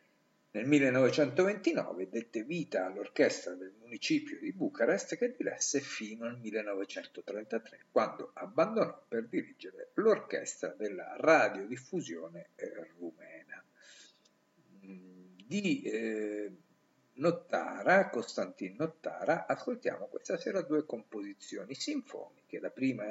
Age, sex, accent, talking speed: 50-69, male, native, 90 wpm